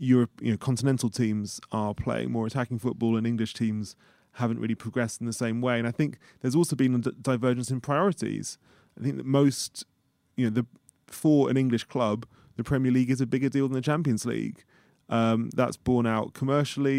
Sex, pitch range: male, 115-130 Hz